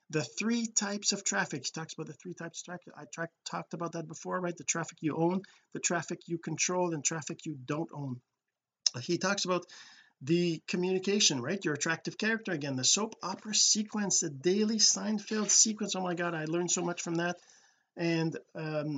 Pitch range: 145-190 Hz